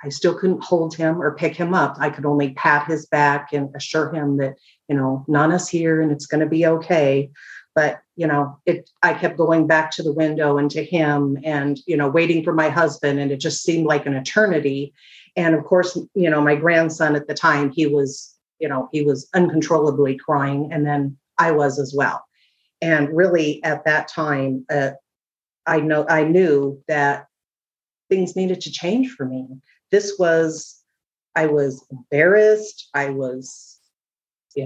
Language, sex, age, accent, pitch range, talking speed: English, female, 40-59, American, 140-170 Hz, 185 wpm